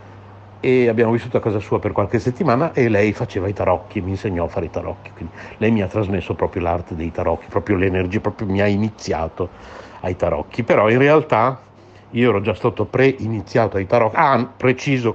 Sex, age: male, 60-79